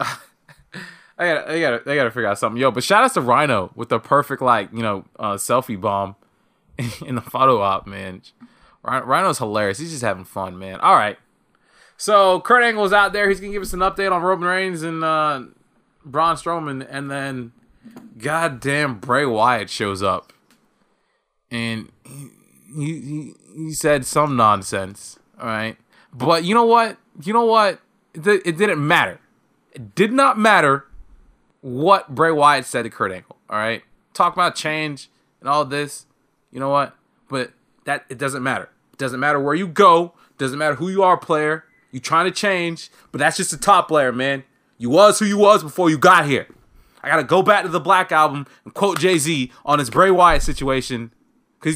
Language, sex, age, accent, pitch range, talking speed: English, male, 20-39, American, 135-185 Hz, 185 wpm